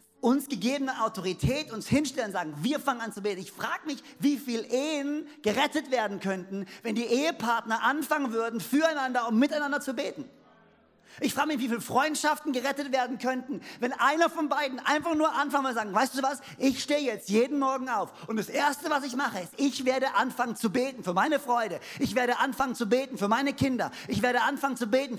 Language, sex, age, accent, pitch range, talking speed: German, male, 50-69, German, 205-275 Hz, 205 wpm